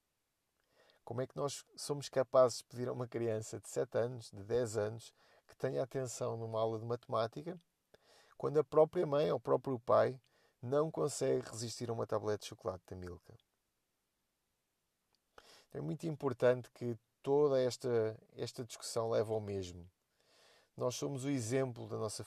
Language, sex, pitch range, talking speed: Portuguese, male, 110-135 Hz, 160 wpm